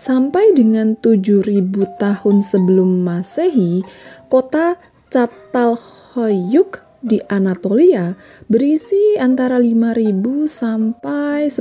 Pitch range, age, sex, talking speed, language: 185-250 Hz, 20-39, female, 70 wpm, Indonesian